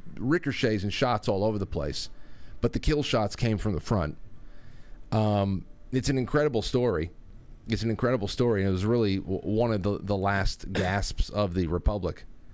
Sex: male